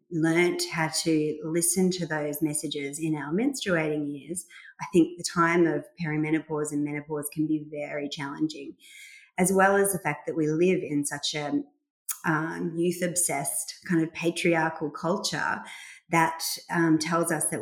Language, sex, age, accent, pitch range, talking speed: English, female, 30-49, Australian, 155-175 Hz, 155 wpm